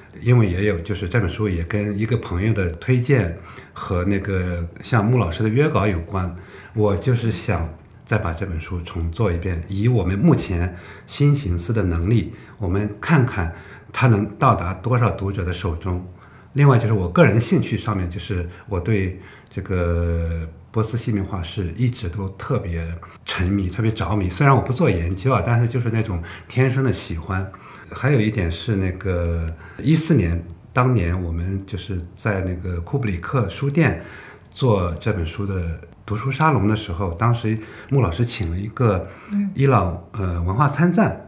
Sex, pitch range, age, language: male, 90-120 Hz, 60-79, Chinese